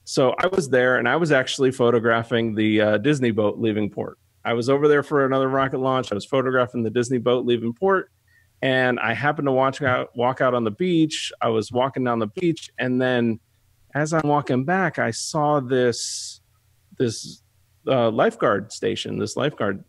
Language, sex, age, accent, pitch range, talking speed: English, male, 30-49, American, 110-135 Hz, 190 wpm